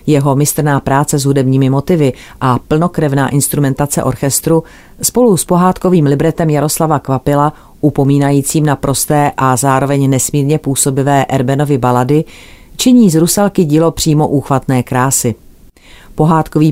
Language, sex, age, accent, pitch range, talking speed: Czech, female, 40-59, native, 130-155 Hz, 120 wpm